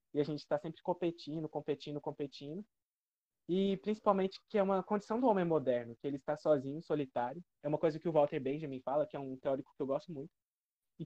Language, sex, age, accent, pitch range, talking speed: Portuguese, male, 20-39, Brazilian, 140-175 Hz, 210 wpm